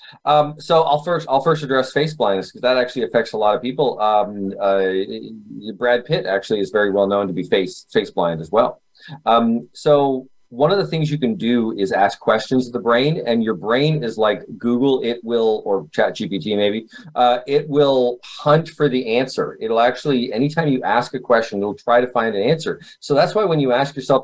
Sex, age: male, 30-49